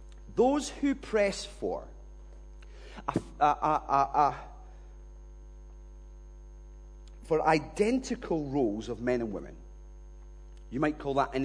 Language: English